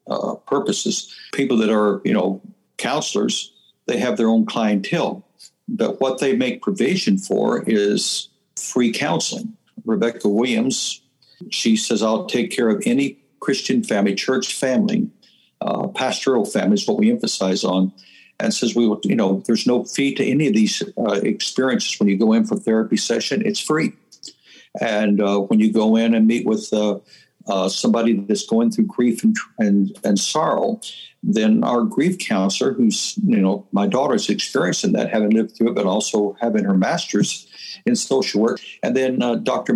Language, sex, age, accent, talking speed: English, male, 60-79, American, 175 wpm